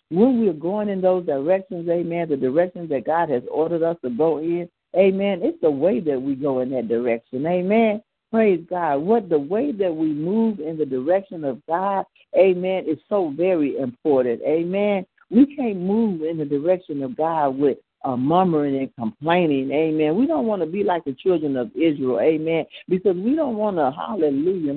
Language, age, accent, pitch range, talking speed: English, 60-79, American, 155-215 Hz, 190 wpm